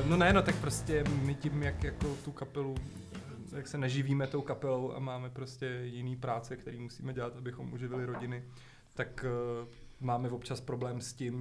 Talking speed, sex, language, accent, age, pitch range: 180 wpm, male, Czech, native, 20-39, 115-125 Hz